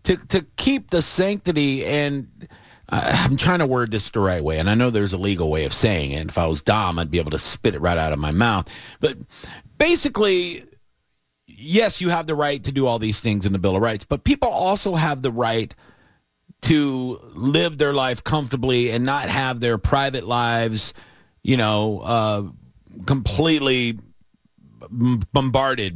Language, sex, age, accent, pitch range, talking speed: English, male, 40-59, American, 100-135 Hz, 185 wpm